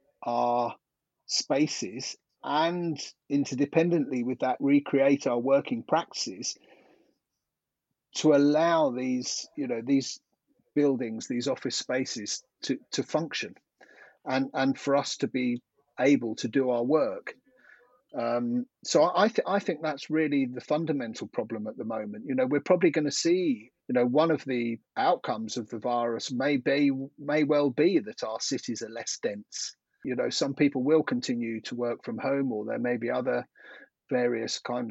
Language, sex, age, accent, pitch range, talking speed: English, male, 40-59, British, 120-150 Hz, 160 wpm